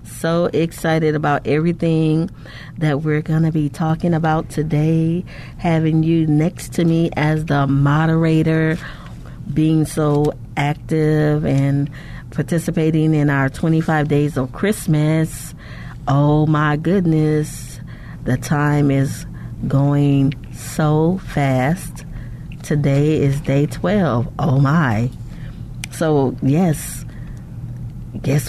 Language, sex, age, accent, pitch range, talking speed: English, female, 40-59, American, 135-160 Hz, 105 wpm